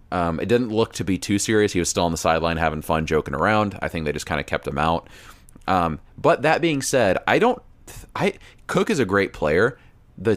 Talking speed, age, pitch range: 245 wpm, 30-49, 80-100 Hz